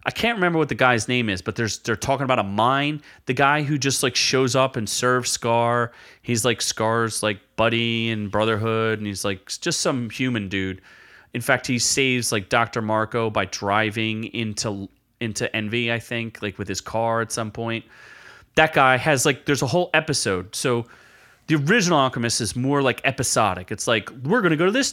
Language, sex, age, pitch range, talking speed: English, male, 30-49, 110-145 Hz, 200 wpm